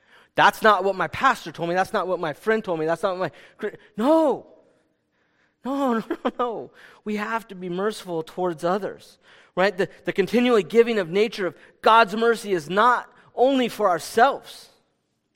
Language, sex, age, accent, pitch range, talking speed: English, male, 30-49, American, 135-205 Hz, 170 wpm